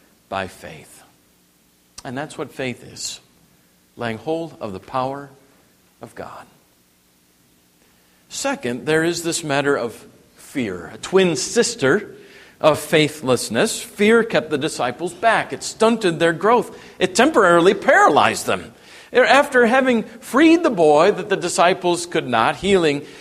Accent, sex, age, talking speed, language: American, male, 50-69, 130 wpm, English